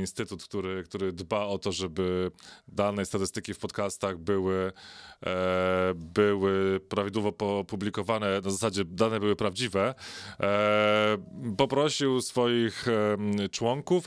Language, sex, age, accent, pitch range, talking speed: Polish, male, 20-39, native, 95-110 Hz, 105 wpm